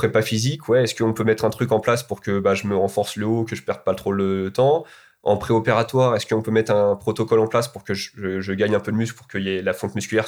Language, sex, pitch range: French, male, 105-130 Hz